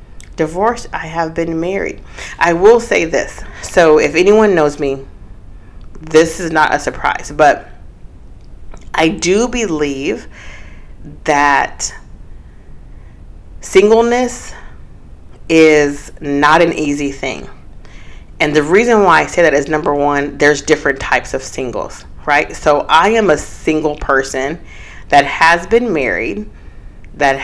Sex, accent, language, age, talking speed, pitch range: female, American, English, 40-59, 125 wpm, 135-165 Hz